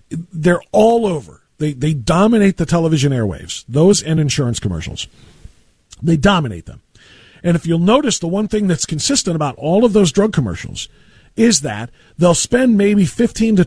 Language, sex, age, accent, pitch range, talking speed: English, male, 50-69, American, 155-225 Hz, 165 wpm